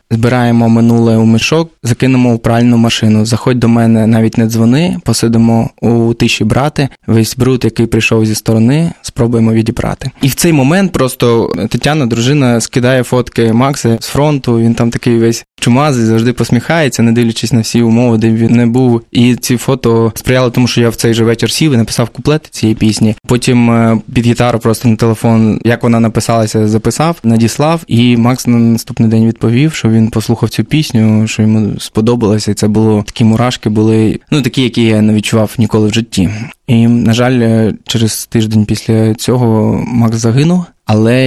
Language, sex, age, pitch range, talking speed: Ukrainian, male, 20-39, 115-125 Hz, 175 wpm